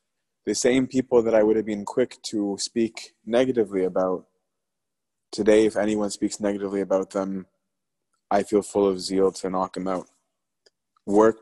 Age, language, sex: 20-39, English, male